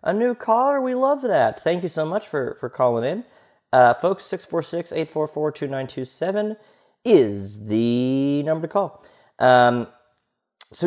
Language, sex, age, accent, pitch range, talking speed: English, male, 30-49, American, 125-195 Hz, 135 wpm